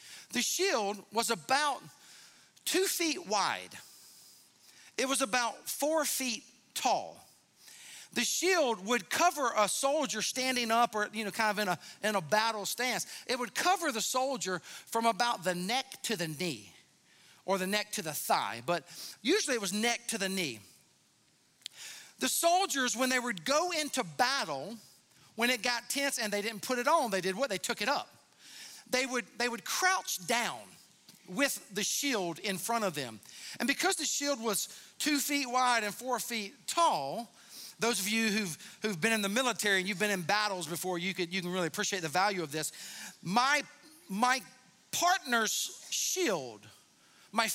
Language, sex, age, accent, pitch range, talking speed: English, male, 50-69, American, 200-275 Hz, 175 wpm